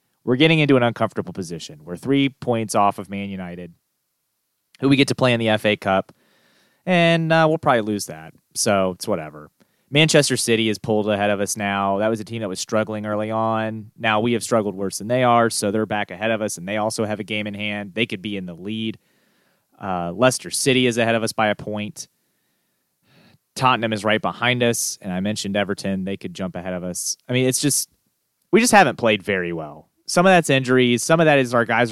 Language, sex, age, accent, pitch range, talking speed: English, male, 30-49, American, 100-130 Hz, 230 wpm